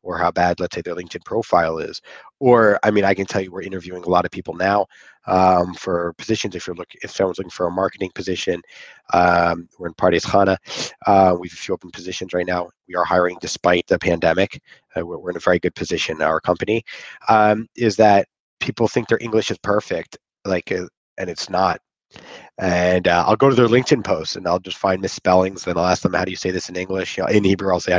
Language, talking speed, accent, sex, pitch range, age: English, 235 wpm, American, male, 90-120 Hz, 30-49